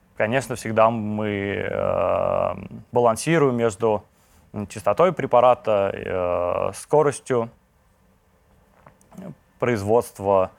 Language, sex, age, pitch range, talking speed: Russian, male, 20-39, 95-115 Hz, 60 wpm